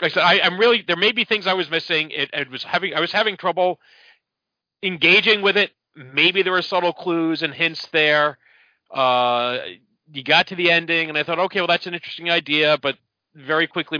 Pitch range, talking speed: 130-175 Hz, 205 wpm